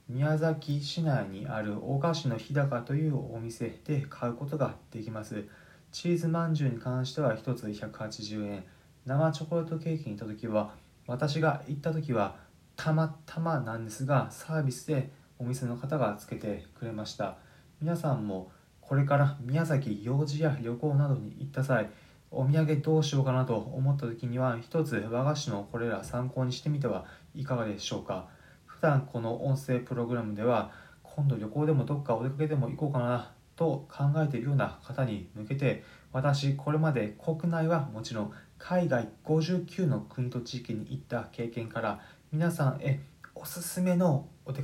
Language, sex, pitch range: Japanese, male, 115-155 Hz